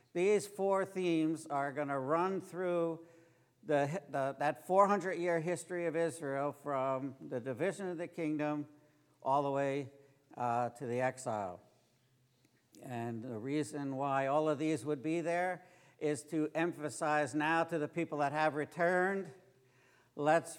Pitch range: 135-170 Hz